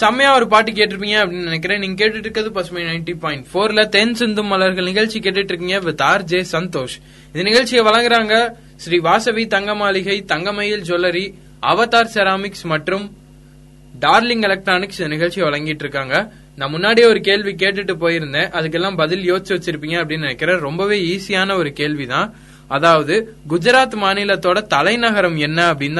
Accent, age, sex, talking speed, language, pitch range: native, 20-39, male, 125 wpm, Tamil, 160-210 Hz